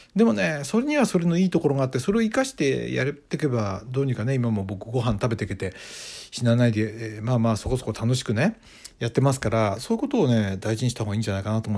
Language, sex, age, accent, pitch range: Japanese, male, 60-79, native, 110-170 Hz